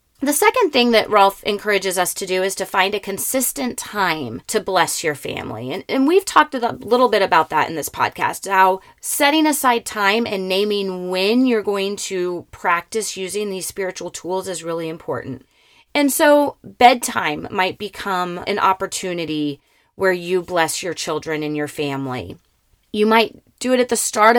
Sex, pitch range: female, 165-215 Hz